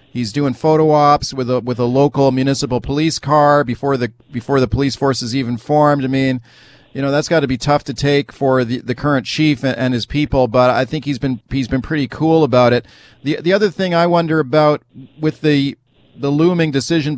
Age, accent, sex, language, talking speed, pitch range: 40-59, American, male, English, 225 wpm, 135-160 Hz